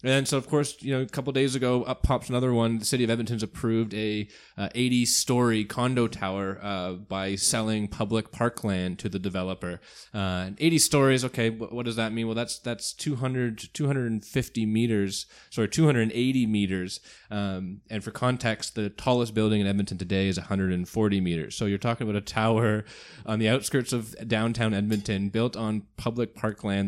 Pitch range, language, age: 100-120 Hz, English, 20-39